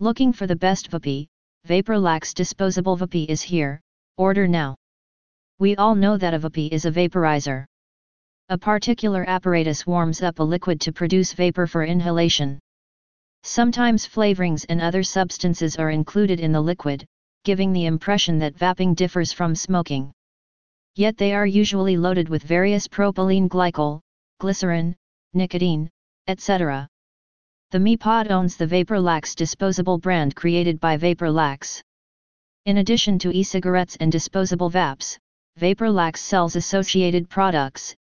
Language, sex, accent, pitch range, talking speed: English, female, American, 160-195 Hz, 135 wpm